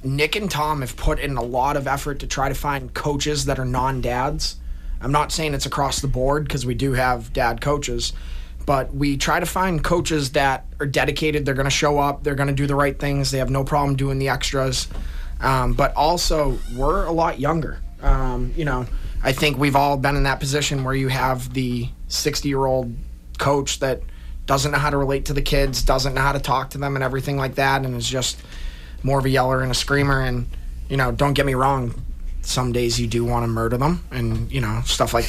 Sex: male